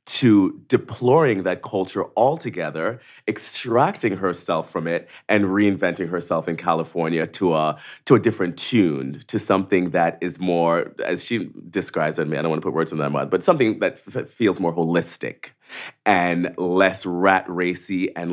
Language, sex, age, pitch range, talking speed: English, male, 30-49, 85-135 Hz, 165 wpm